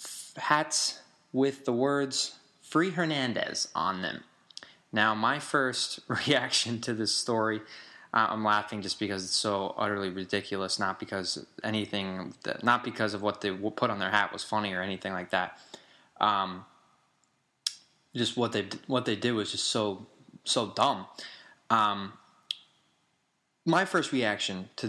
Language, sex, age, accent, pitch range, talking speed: English, male, 20-39, American, 105-125 Hz, 145 wpm